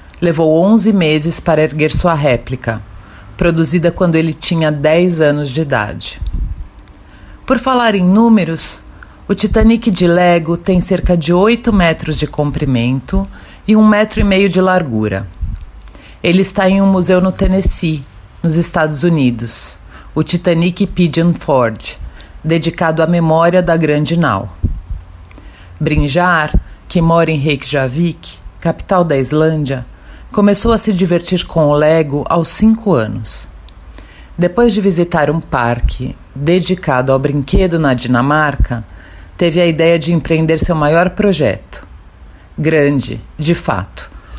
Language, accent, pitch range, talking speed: Portuguese, Brazilian, 125-180 Hz, 130 wpm